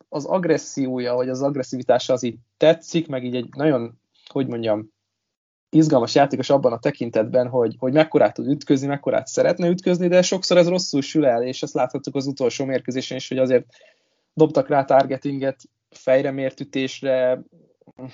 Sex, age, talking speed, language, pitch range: male, 20-39, 150 wpm, Hungarian, 125-155 Hz